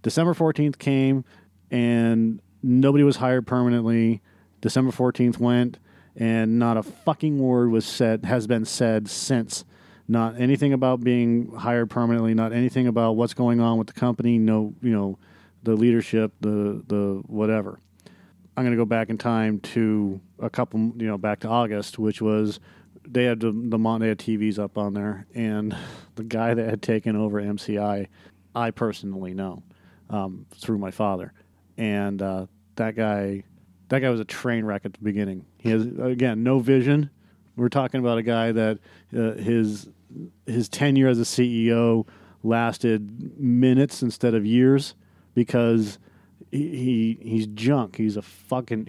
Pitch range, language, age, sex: 105-120 Hz, English, 40-59, male